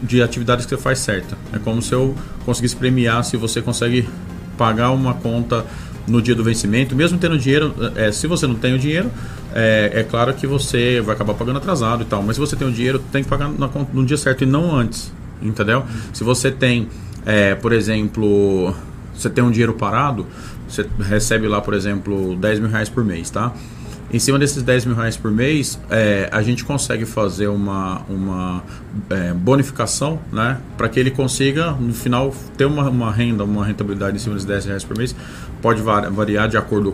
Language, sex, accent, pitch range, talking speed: Portuguese, male, Brazilian, 105-130 Hz, 205 wpm